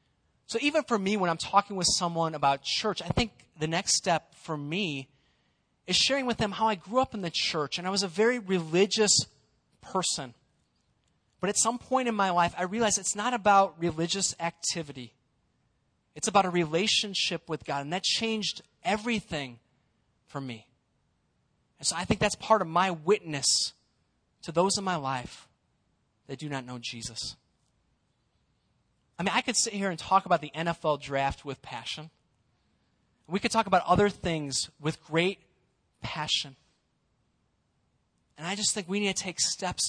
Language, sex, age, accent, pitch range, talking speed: English, male, 30-49, American, 135-195 Hz, 170 wpm